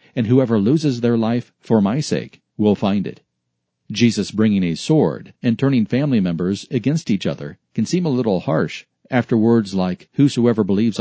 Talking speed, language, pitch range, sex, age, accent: 175 wpm, English, 105-125 Hz, male, 40-59, American